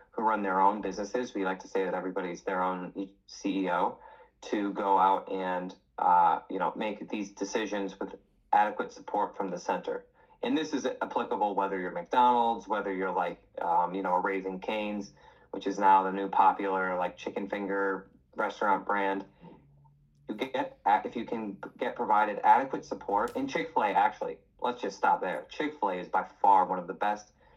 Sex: male